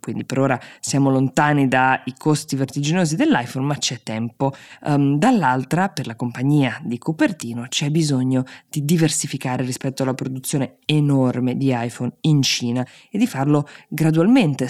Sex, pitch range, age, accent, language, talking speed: female, 130-155 Hz, 20-39, native, Italian, 140 wpm